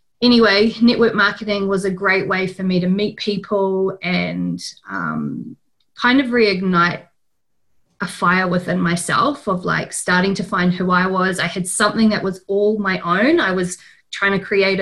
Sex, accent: female, Australian